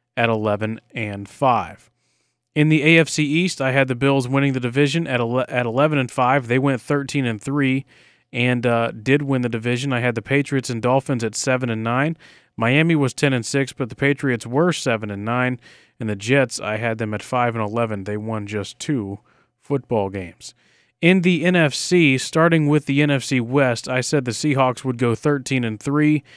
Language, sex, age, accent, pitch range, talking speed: English, male, 30-49, American, 115-140 Hz, 195 wpm